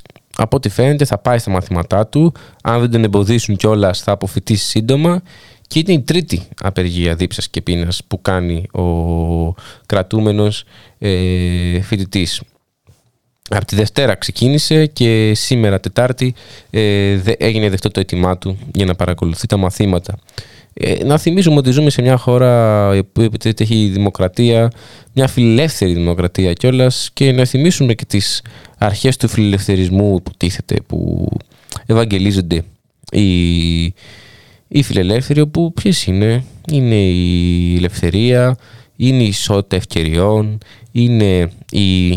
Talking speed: 125 wpm